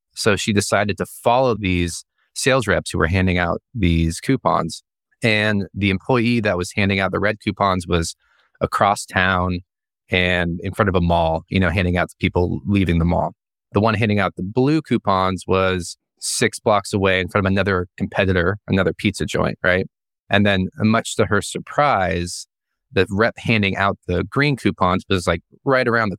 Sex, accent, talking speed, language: male, American, 185 wpm, English